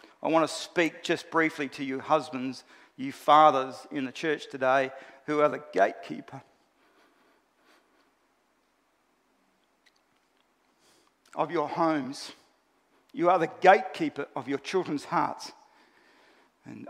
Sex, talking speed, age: male, 110 wpm, 50-69